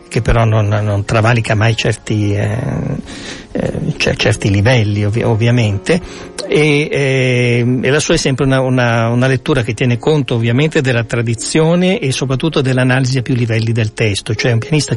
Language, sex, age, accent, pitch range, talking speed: Italian, male, 60-79, native, 115-135 Hz, 170 wpm